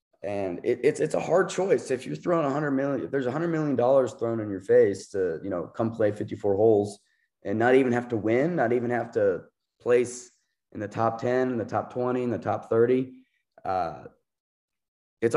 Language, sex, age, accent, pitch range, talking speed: English, male, 20-39, American, 110-140 Hz, 210 wpm